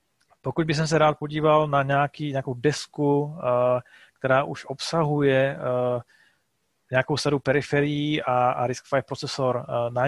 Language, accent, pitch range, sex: Czech, native, 125-145 Hz, male